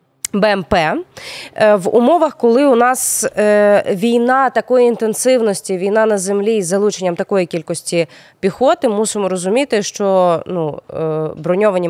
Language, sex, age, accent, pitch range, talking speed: Ukrainian, female, 20-39, native, 185-245 Hz, 110 wpm